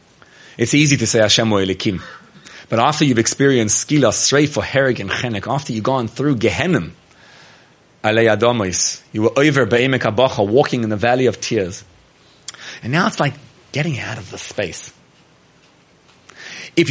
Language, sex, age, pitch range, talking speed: English, male, 30-49, 120-170 Hz, 150 wpm